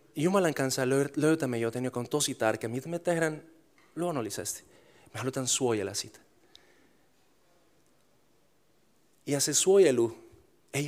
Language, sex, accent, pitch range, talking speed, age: Finnish, male, native, 115-150 Hz, 110 wpm, 30-49